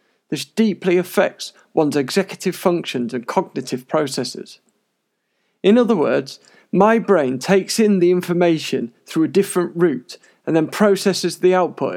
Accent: British